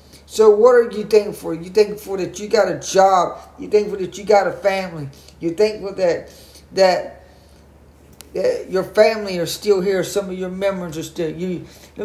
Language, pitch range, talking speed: English, 165-240 Hz, 190 wpm